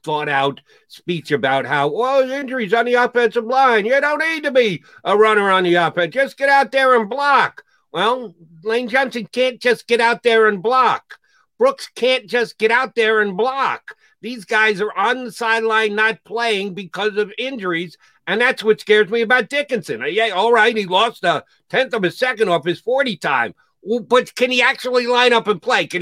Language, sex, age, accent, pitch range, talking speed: English, male, 50-69, American, 165-240 Hz, 200 wpm